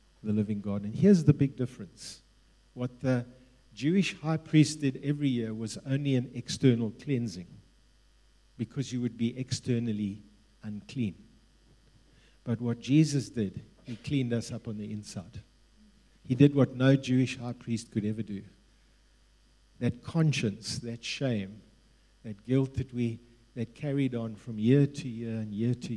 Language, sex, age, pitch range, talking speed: English, male, 50-69, 105-130 Hz, 150 wpm